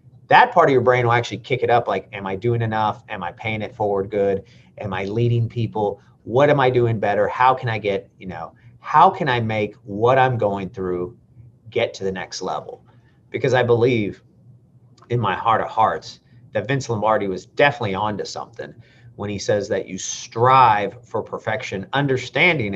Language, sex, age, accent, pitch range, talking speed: English, male, 40-59, American, 105-130 Hz, 195 wpm